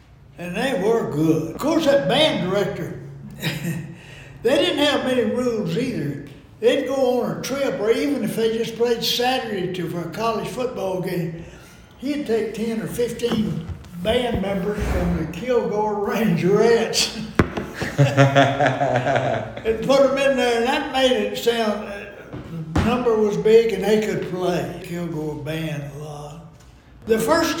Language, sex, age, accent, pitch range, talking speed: English, male, 60-79, American, 170-230 Hz, 145 wpm